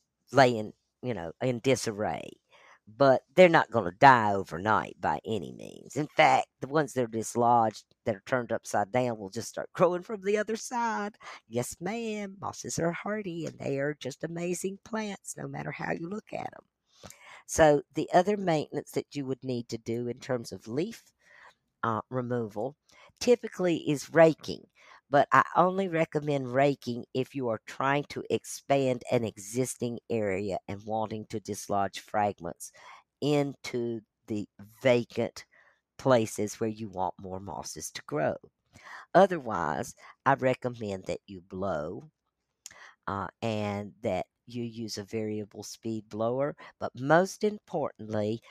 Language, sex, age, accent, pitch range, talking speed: English, female, 50-69, American, 110-150 Hz, 150 wpm